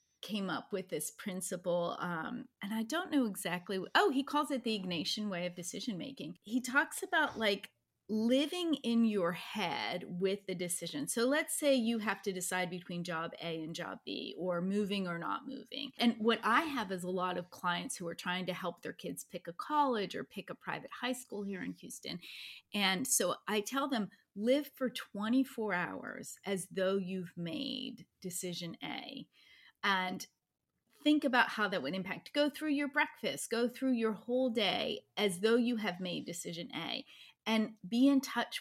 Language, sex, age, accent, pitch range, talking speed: English, female, 30-49, American, 185-265 Hz, 185 wpm